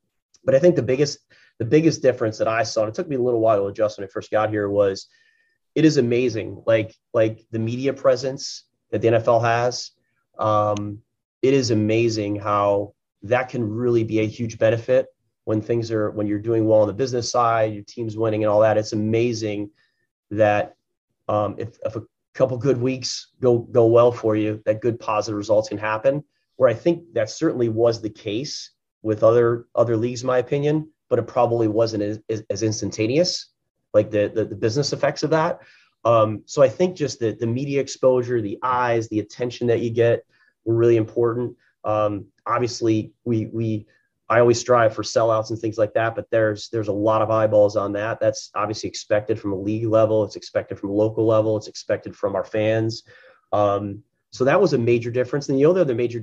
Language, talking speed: English, 200 wpm